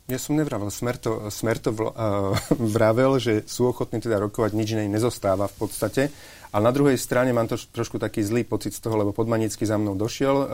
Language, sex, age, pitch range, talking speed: Slovak, male, 30-49, 105-125 Hz, 210 wpm